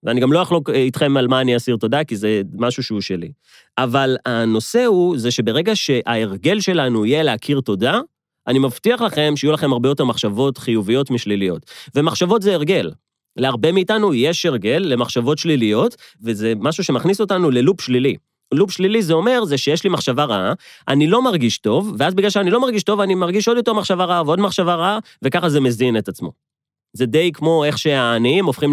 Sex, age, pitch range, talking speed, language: male, 30-49, 115-170 Hz, 150 wpm, Hebrew